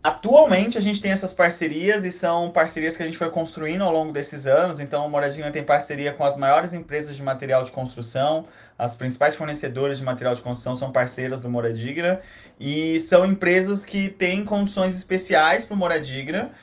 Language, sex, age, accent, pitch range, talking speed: Portuguese, male, 20-39, Brazilian, 140-180 Hz, 190 wpm